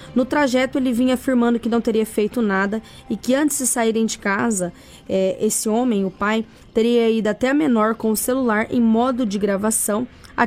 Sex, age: female, 10-29